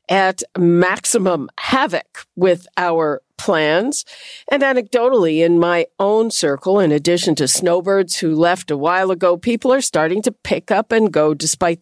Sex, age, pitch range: female, 50-69, 165-215 Hz